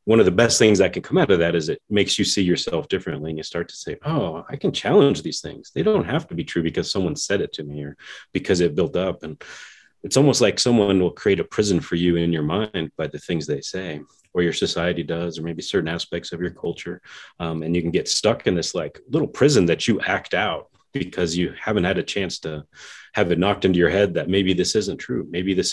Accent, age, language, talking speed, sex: American, 30-49, English, 260 wpm, male